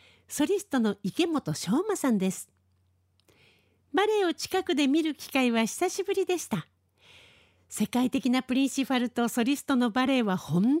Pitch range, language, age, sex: 200-295 Hz, Japanese, 50-69, female